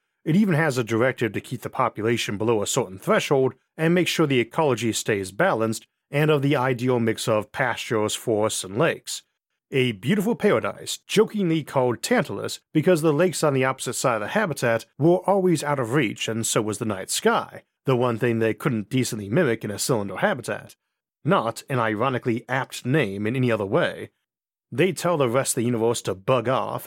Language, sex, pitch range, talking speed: English, male, 115-155 Hz, 195 wpm